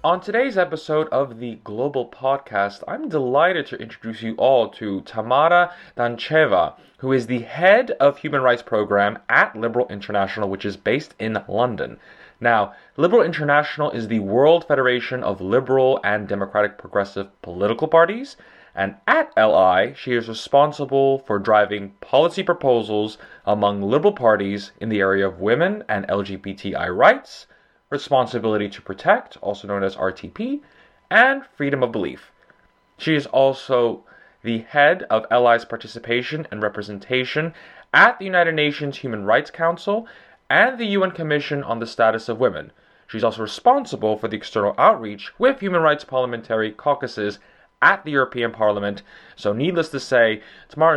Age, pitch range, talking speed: 30-49, 105-150 Hz, 145 wpm